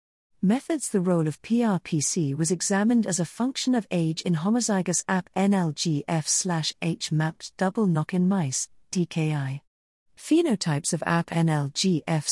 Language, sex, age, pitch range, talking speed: English, female, 40-59, 155-200 Hz, 125 wpm